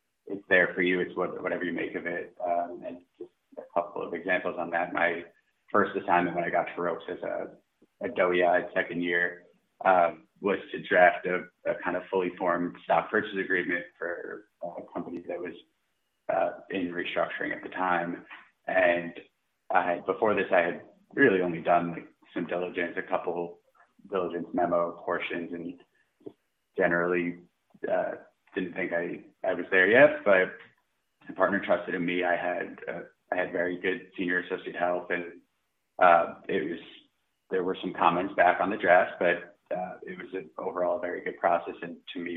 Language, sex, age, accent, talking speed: English, male, 30-49, American, 175 wpm